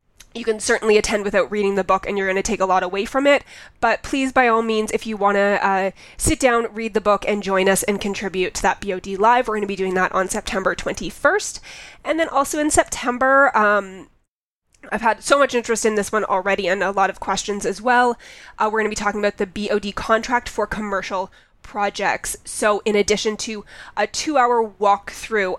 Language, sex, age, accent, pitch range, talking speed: English, female, 20-39, American, 195-230 Hz, 220 wpm